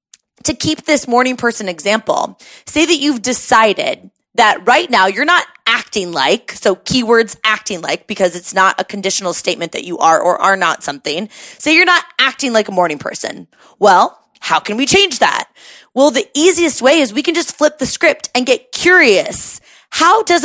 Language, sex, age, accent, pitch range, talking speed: English, female, 20-39, American, 210-300 Hz, 190 wpm